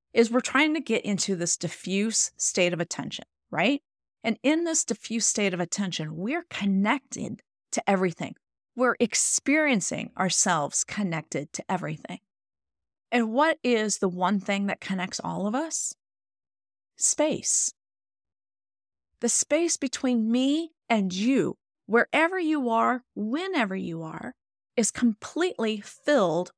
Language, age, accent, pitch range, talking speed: English, 40-59, American, 195-275 Hz, 125 wpm